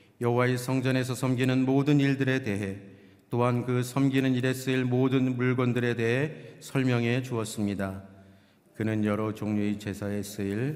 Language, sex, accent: Korean, male, native